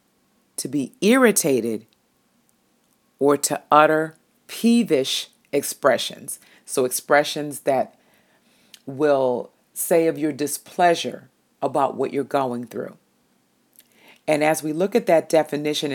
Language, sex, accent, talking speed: English, female, American, 105 wpm